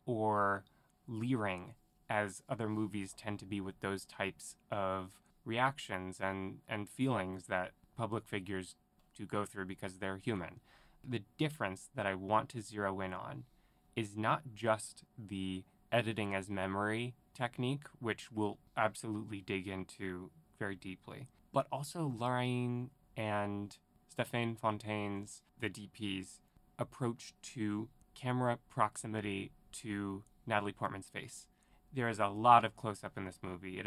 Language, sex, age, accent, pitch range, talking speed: English, male, 20-39, American, 95-120 Hz, 135 wpm